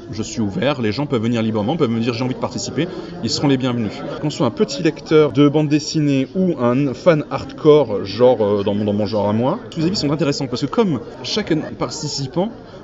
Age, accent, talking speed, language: 30-49, French, 230 wpm, French